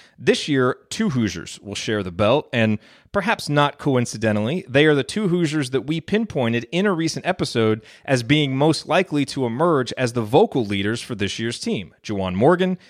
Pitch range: 110-155 Hz